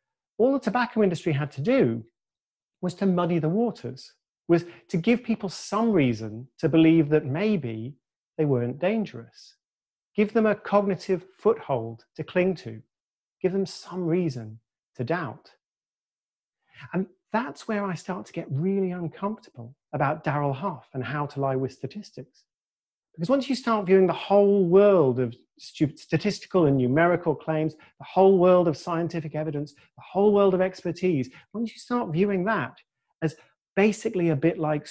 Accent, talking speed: British, 160 wpm